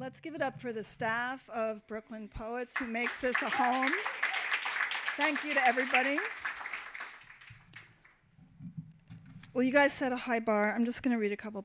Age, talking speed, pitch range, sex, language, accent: 40-59, 165 wpm, 205-260 Hz, female, English, American